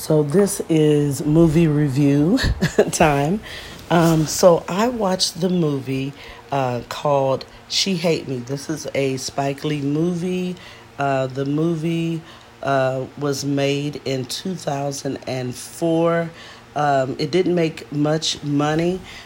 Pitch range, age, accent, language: 130-165 Hz, 40-59, American, English